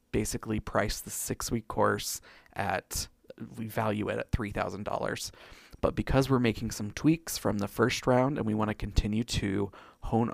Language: English